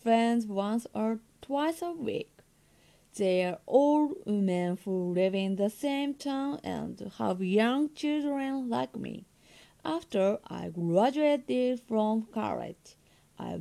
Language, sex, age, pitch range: Japanese, female, 30-49, 190-275 Hz